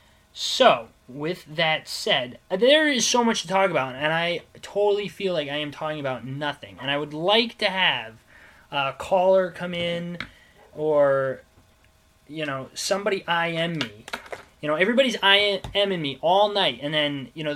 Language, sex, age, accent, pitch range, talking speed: English, male, 20-39, American, 130-165 Hz, 165 wpm